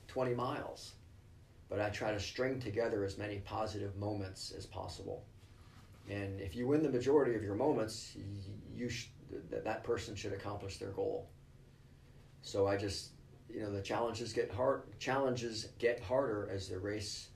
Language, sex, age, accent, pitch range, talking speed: English, male, 40-59, American, 95-115 Hz, 160 wpm